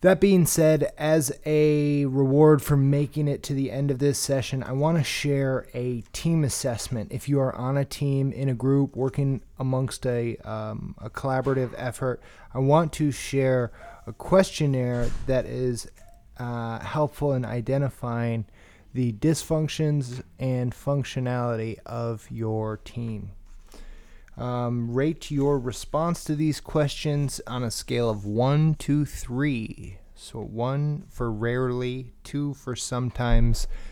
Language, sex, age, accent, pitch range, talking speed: English, male, 20-39, American, 115-140 Hz, 135 wpm